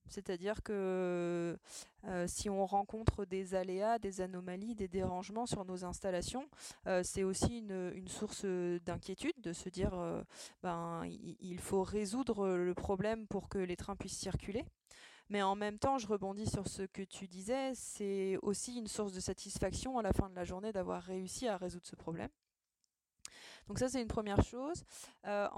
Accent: French